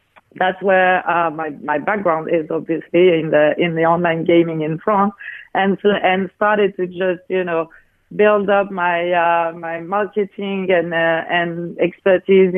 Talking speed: 160 wpm